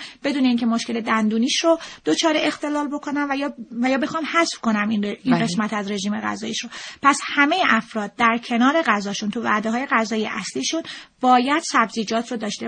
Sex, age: female, 30-49